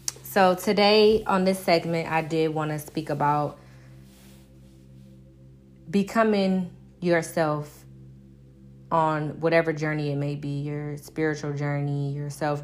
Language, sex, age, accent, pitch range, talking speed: English, female, 20-39, American, 140-165 Hz, 115 wpm